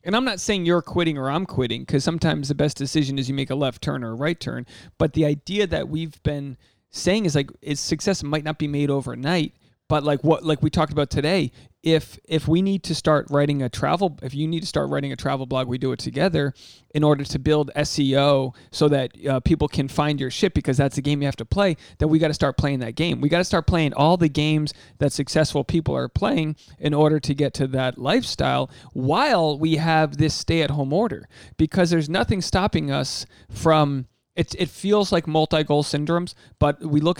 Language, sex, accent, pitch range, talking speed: English, male, American, 135-160 Hz, 225 wpm